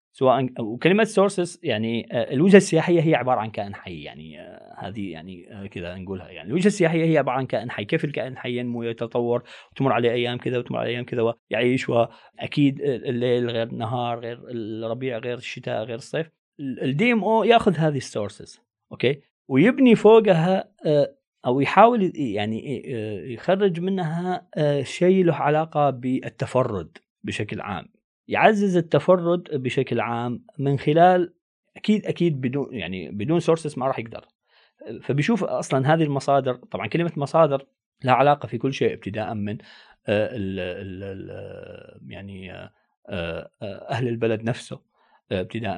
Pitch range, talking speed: 110-165 Hz, 130 wpm